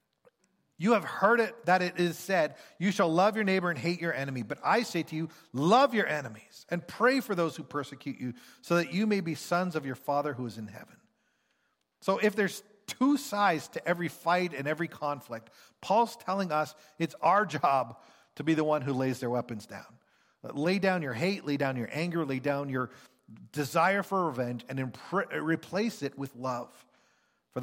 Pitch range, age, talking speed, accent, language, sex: 135-190 Hz, 40-59, 200 wpm, American, English, male